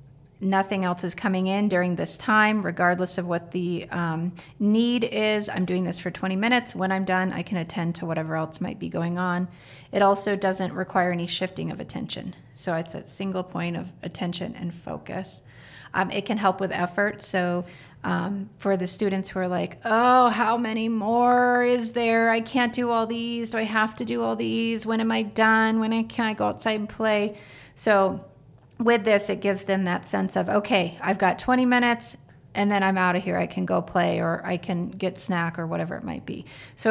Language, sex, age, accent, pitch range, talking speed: English, female, 30-49, American, 180-215 Hz, 210 wpm